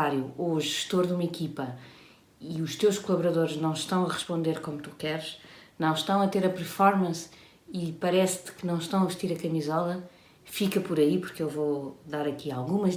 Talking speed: 190 wpm